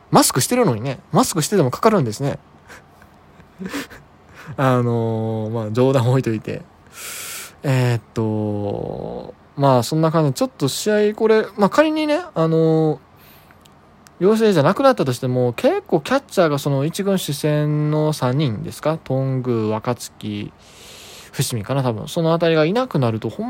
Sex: male